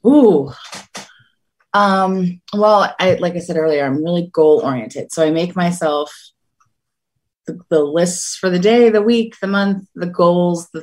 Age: 30-49